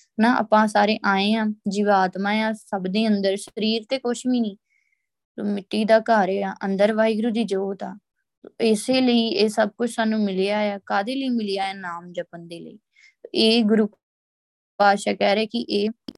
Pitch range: 195-220 Hz